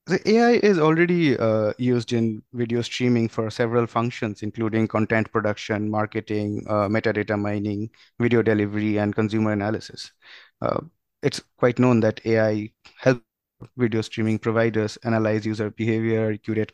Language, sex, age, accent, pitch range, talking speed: English, male, 20-39, Indian, 110-120 Hz, 135 wpm